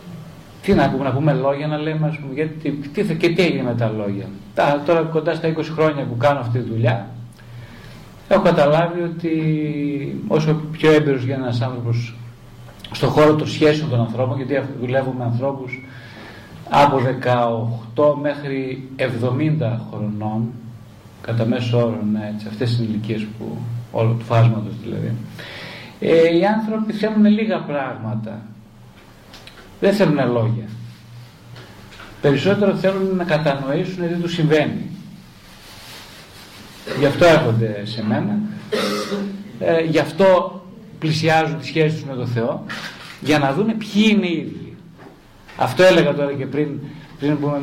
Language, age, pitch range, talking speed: Greek, 40-59, 120-160 Hz, 135 wpm